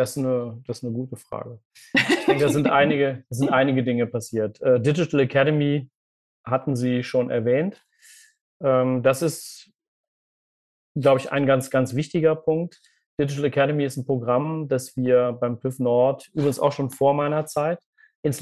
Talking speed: 155 wpm